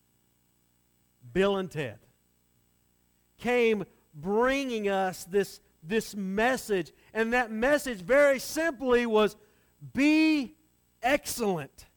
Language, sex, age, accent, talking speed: English, male, 40-59, American, 85 wpm